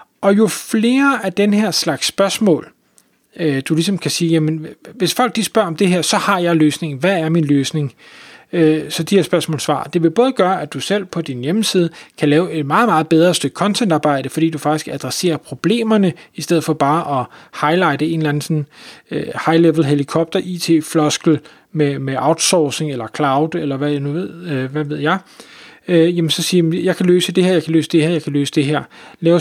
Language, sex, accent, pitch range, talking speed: Danish, male, native, 145-175 Hz, 205 wpm